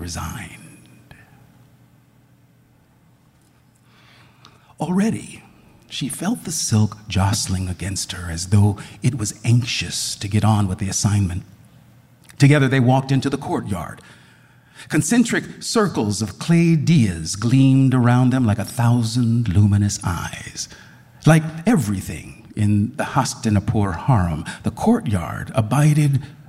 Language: English